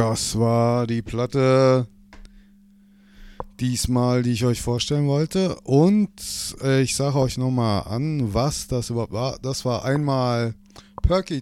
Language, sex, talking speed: German, male, 130 wpm